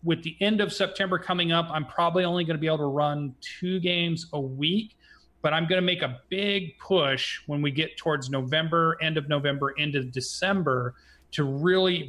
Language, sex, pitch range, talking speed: English, male, 130-165 Hz, 205 wpm